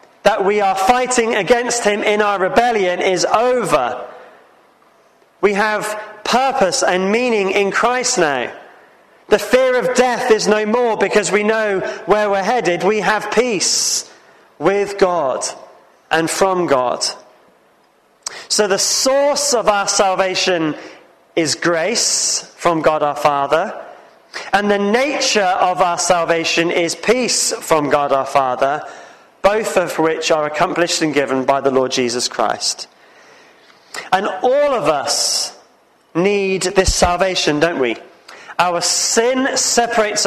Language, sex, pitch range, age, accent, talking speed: English, male, 175-230 Hz, 30-49, British, 130 wpm